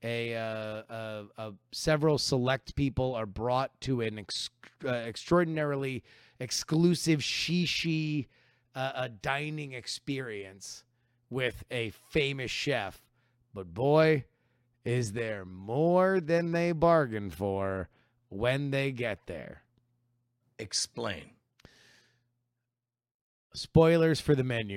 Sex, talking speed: male, 100 wpm